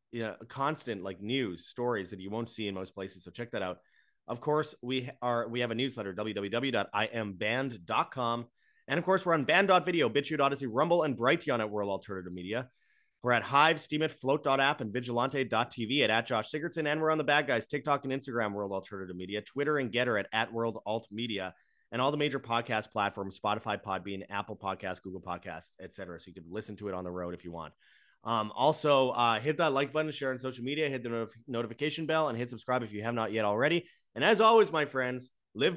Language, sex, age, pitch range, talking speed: English, male, 30-49, 105-140 Hz, 215 wpm